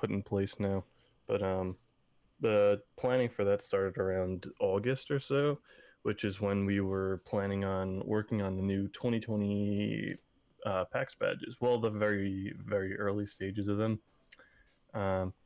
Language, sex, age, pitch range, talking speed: English, male, 20-39, 100-115 Hz, 150 wpm